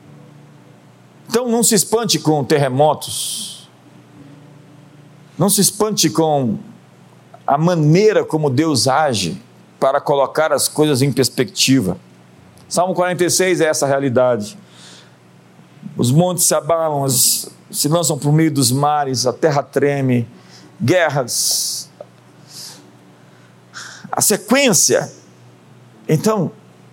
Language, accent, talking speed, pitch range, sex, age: Portuguese, Brazilian, 100 wpm, 135-180 Hz, male, 50-69